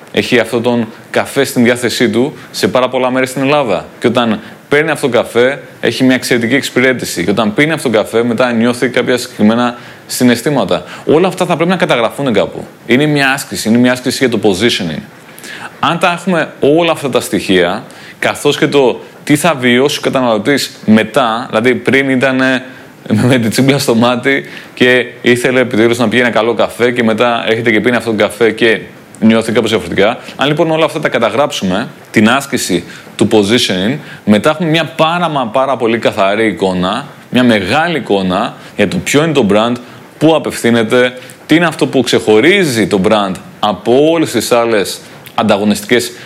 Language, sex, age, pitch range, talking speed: Greek, male, 20-39, 115-140 Hz, 175 wpm